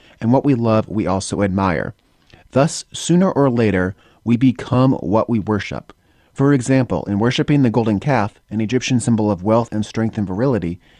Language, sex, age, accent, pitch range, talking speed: English, male, 30-49, American, 100-130 Hz, 175 wpm